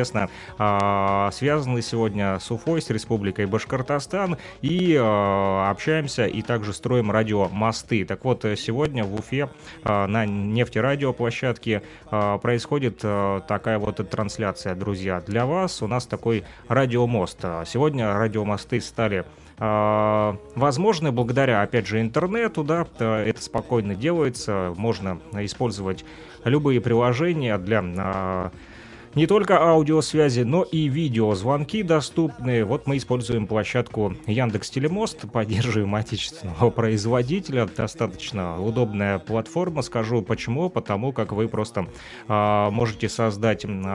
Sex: male